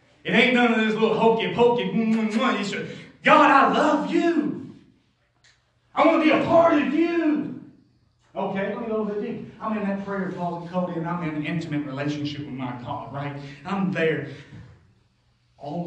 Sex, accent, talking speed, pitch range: male, American, 180 wpm, 140-200 Hz